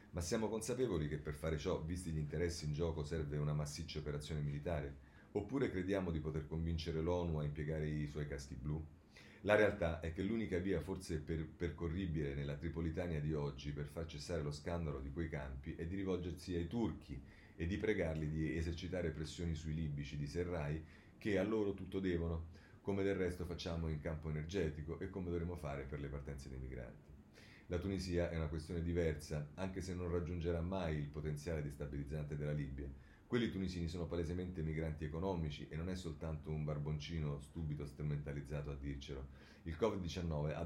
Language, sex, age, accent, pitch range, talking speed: Italian, male, 40-59, native, 75-90 Hz, 175 wpm